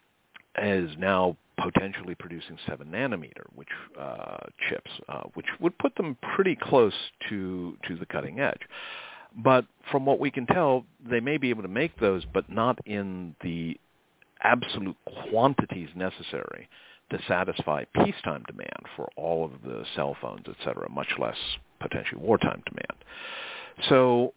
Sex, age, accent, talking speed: male, 50-69, American, 145 wpm